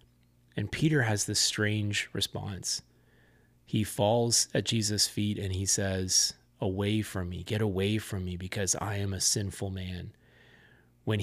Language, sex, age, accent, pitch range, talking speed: English, male, 30-49, American, 95-130 Hz, 150 wpm